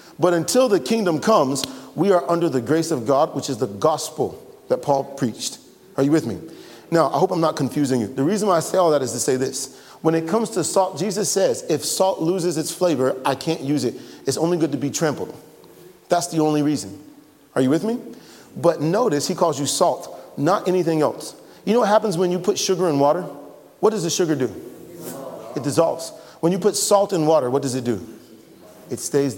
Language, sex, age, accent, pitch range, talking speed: English, male, 40-59, American, 135-170 Hz, 225 wpm